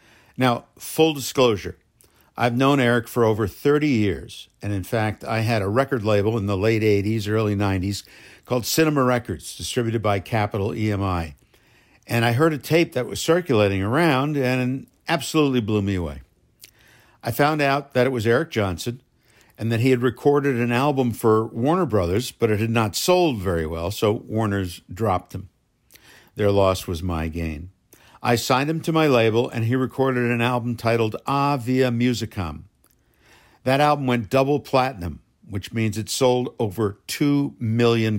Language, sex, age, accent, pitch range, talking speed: English, male, 60-79, American, 105-130 Hz, 170 wpm